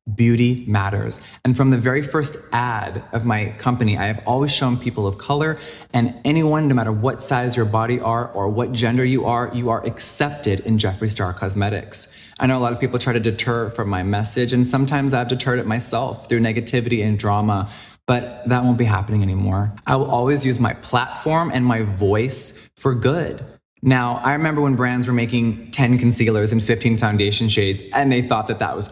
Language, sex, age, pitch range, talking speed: English, male, 20-39, 105-125 Hz, 200 wpm